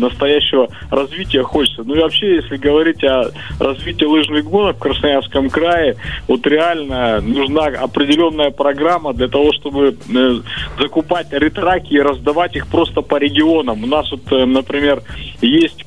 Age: 20-39